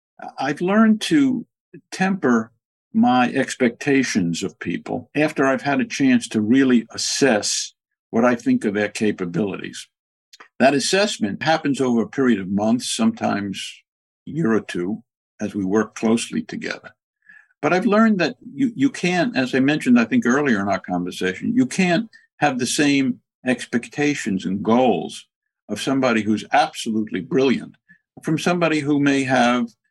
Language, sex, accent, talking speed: English, male, American, 150 wpm